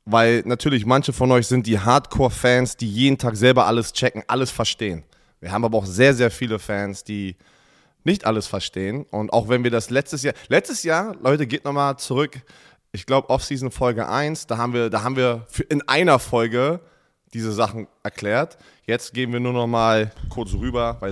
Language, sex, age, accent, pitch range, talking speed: German, male, 20-39, German, 115-140 Hz, 190 wpm